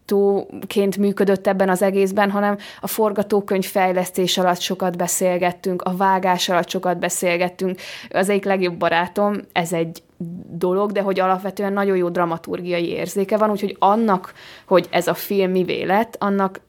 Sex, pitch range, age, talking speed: female, 175-200 Hz, 20-39, 145 wpm